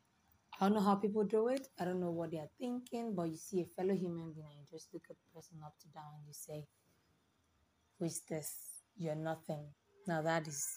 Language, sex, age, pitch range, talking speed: English, female, 20-39, 140-190 Hz, 235 wpm